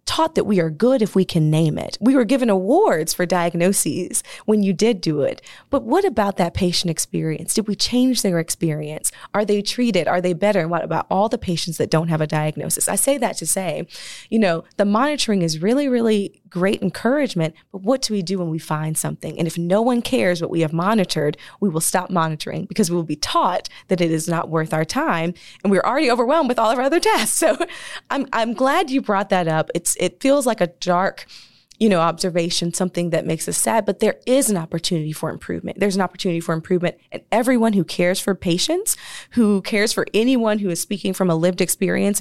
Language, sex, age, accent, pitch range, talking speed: English, female, 20-39, American, 165-220 Hz, 225 wpm